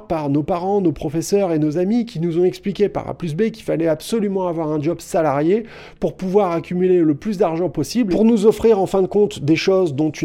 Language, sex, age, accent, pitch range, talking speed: French, male, 30-49, French, 150-190 Hz, 240 wpm